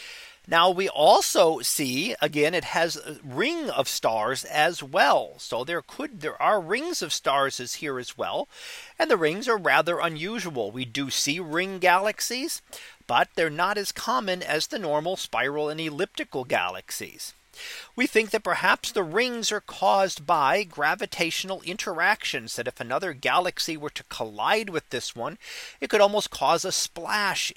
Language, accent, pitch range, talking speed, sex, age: English, American, 155-215 Hz, 165 wpm, male, 40-59